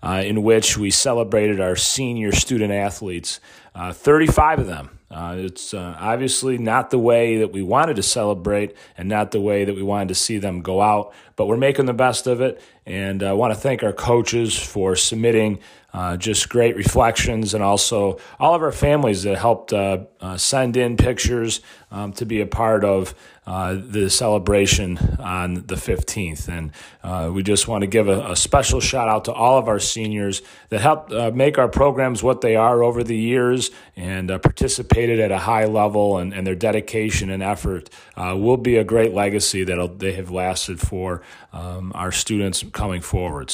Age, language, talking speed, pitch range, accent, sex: 30-49, English, 190 wpm, 95-120 Hz, American, male